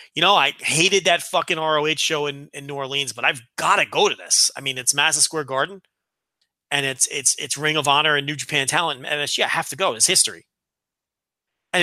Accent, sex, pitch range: American, male, 140-175 Hz